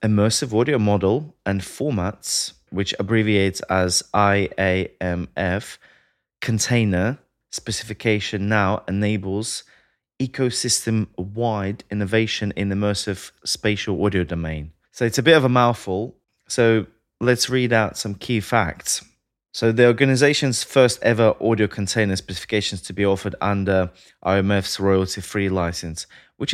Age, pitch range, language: 20-39, 95-120 Hz, English